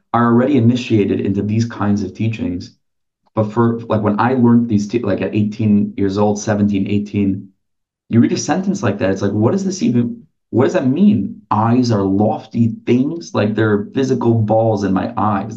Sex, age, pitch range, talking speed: male, 30-49, 105-115 Hz, 195 wpm